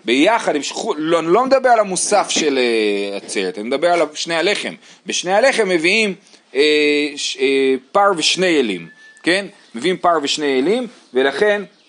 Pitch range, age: 140-215 Hz, 30-49